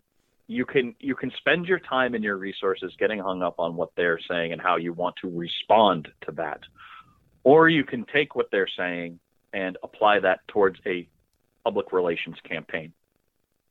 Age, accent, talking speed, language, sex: 40-59, American, 175 wpm, English, male